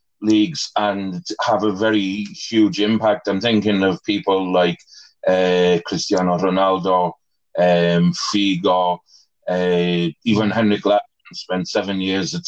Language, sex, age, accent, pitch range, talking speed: English, male, 30-49, British, 95-110 Hz, 120 wpm